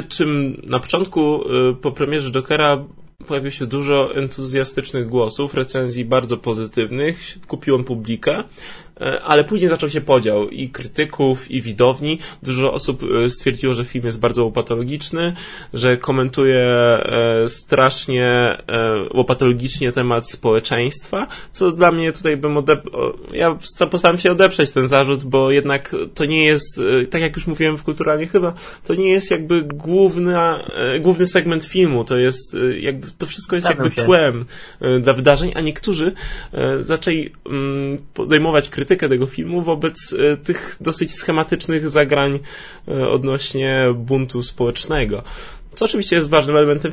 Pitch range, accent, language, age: 130-160 Hz, native, Polish, 20-39